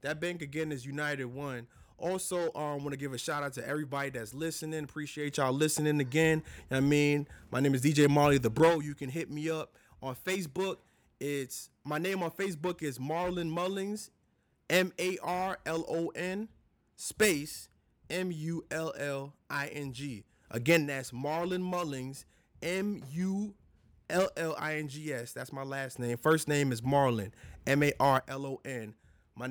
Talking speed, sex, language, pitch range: 135 wpm, male, English, 135-180 Hz